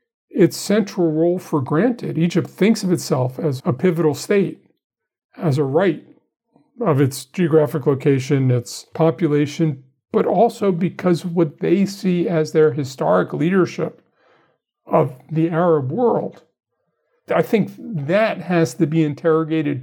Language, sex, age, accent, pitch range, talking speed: English, male, 50-69, American, 150-180 Hz, 130 wpm